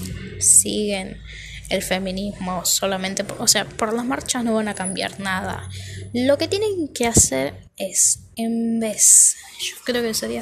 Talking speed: 150 wpm